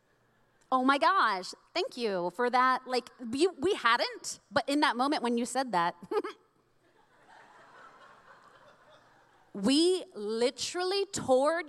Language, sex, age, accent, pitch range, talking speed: English, female, 30-49, American, 195-290 Hz, 115 wpm